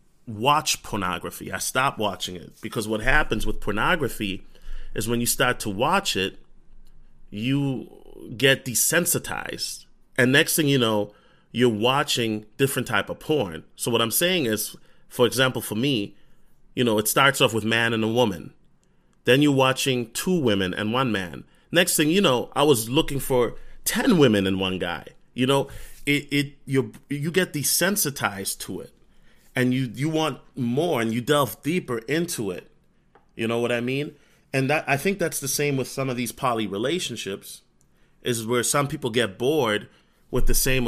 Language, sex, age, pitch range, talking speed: English, male, 30-49, 110-140 Hz, 175 wpm